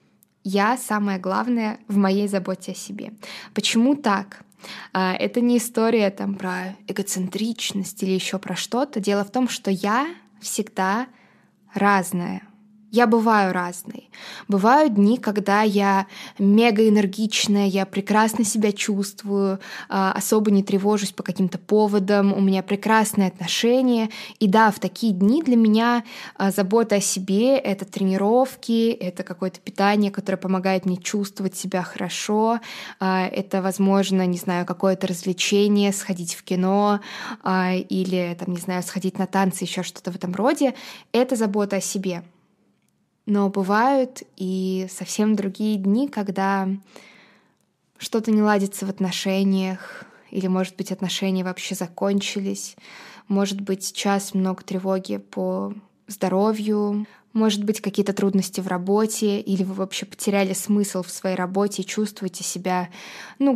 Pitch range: 190-215 Hz